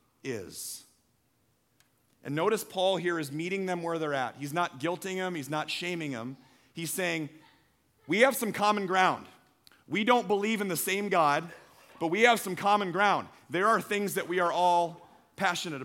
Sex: male